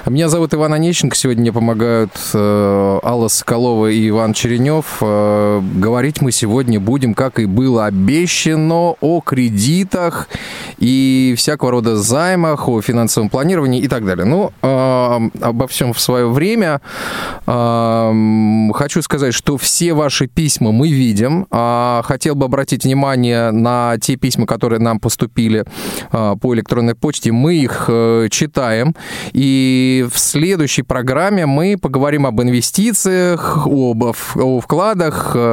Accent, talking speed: native, 135 wpm